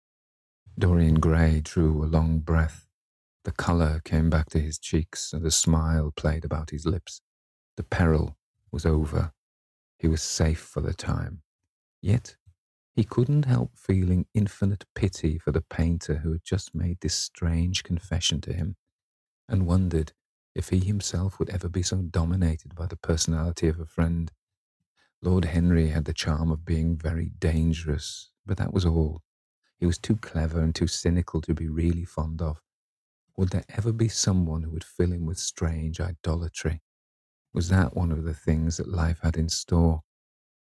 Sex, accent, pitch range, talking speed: male, British, 80-95 Hz, 165 wpm